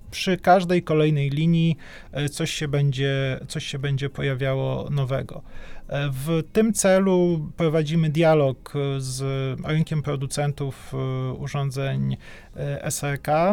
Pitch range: 135-160 Hz